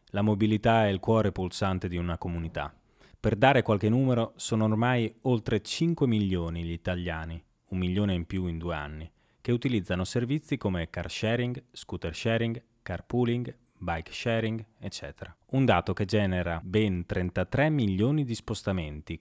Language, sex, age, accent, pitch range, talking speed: Italian, male, 30-49, native, 85-115 Hz, 155 wpm